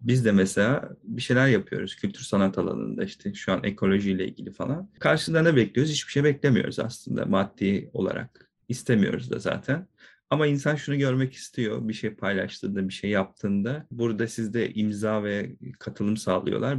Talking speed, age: 155 wpm, 40-59